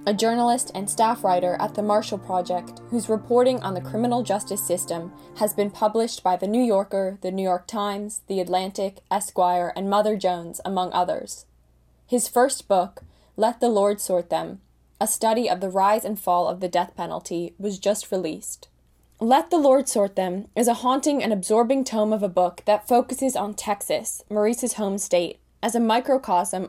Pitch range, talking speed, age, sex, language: 185-225 Hz, 180 wpm, 10-29, female, English